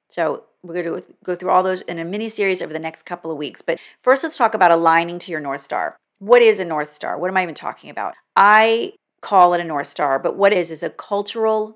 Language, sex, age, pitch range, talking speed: English, female, 40-59, 160-200 Hz, 260 wpm